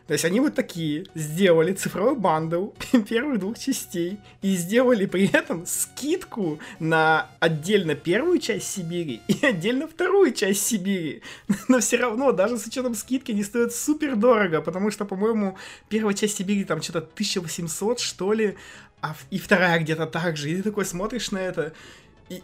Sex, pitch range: male, 140-205 Hz